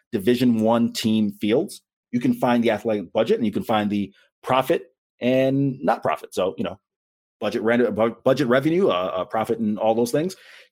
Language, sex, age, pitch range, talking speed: English, male, 30-49, 110-145 Hz, 190 wpm